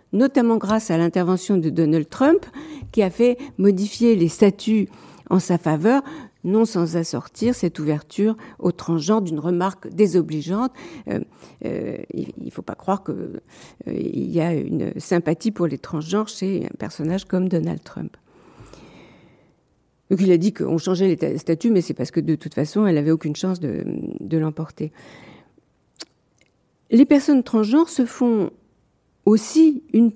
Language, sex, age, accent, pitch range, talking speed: French, female, 50-69, French, 180-255 Hz, 155 wpm